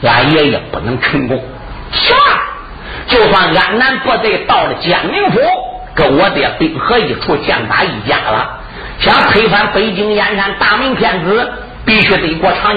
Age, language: 50-69, Chinese